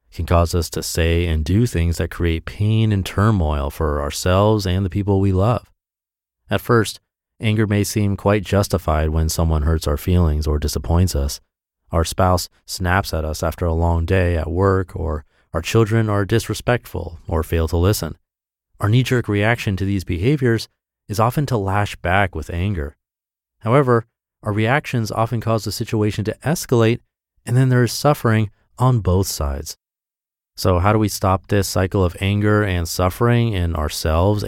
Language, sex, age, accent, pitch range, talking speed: English, male, 30-49, American, 85-110 Hz, 170 wpm